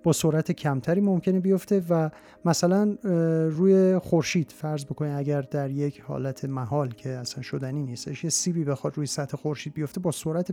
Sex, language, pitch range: male, Persian, 145-185 Hz